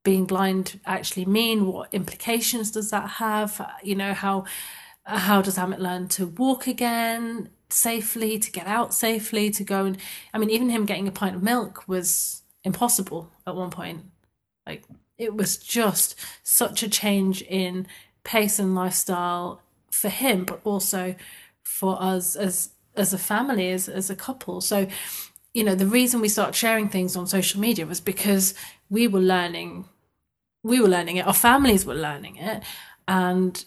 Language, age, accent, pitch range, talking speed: English, 30-49, British, 185-215 Hz, 165 wpm